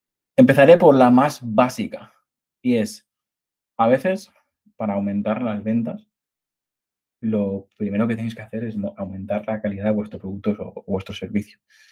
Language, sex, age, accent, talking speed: Spanish, male, 20-39, Spanish, 150 wpm